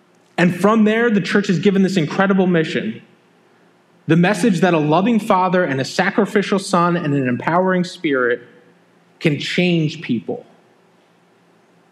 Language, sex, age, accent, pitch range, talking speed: English, male, 30-49, American, 150-190 Hz, 135 wpm